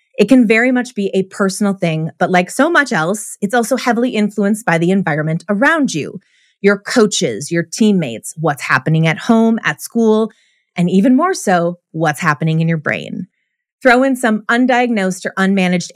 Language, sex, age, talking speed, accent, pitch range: English, female, 30-49, 175 wpm, American, 165-230 Hz